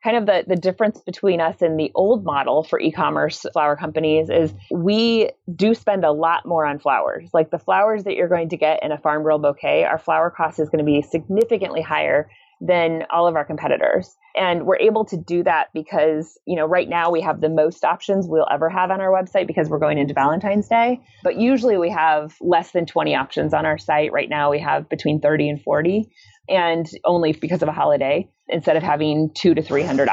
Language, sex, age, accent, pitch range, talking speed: English, female, 30-49, American, 155-190 Hz, 215 wpm